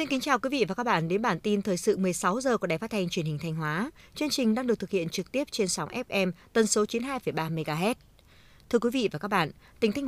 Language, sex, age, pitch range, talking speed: Vietnamese, female, 20-39, 185-240 Hz, 275 wpm